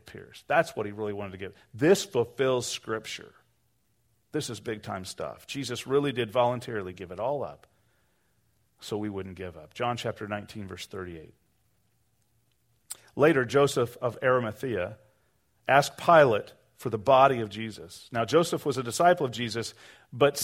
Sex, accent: male, American